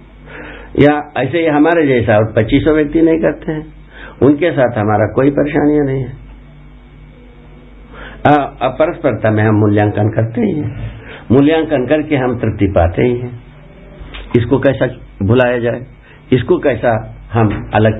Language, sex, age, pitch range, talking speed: Hindi, male, 60-79, 105-140 Hz, 130 wpm